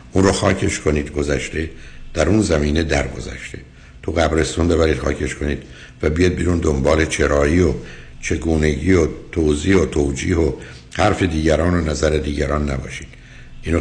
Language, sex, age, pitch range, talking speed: Persian, male, 60-79, 65-85 Hz, 140 wpm